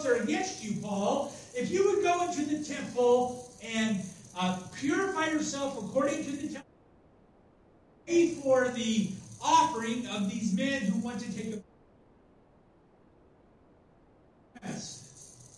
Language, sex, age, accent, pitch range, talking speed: English, male, 50-69, American, 205-295 Hz, 125 wpm